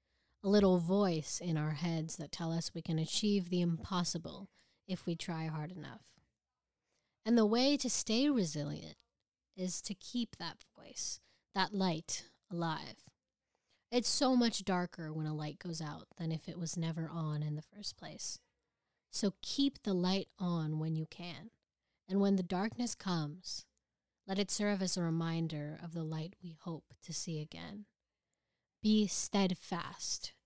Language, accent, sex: English, American, female